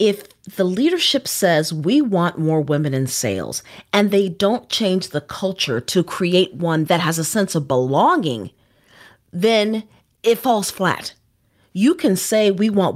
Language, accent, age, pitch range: English, American, 40-59, 155-210 Hz